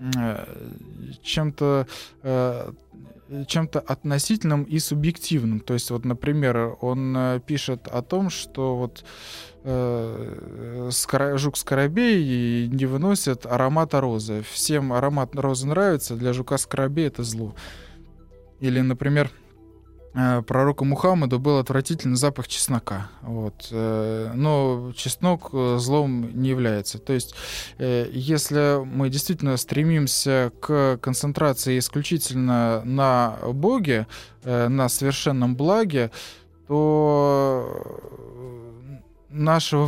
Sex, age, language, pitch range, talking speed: male, 20-39, Russian, 120-145 Hz, 85 wpm